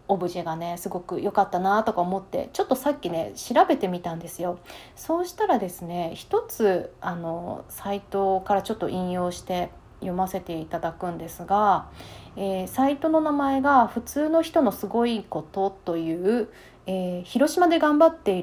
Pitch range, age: 180-250 Hz, 30-49